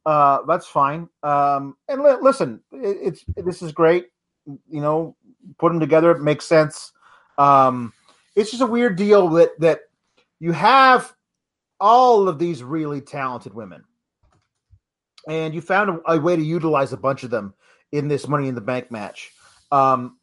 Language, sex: English, male